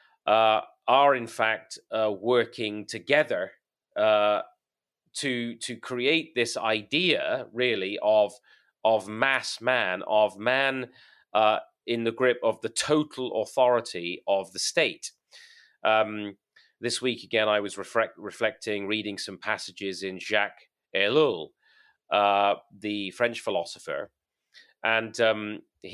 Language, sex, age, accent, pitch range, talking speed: English, male, 30-49, British, 100-125 Hz, 120 wpm